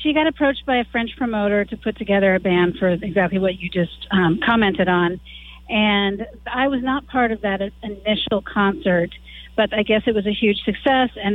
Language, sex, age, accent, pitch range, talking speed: English, female, 40-59, American, 180-215 Hz, 200 wpm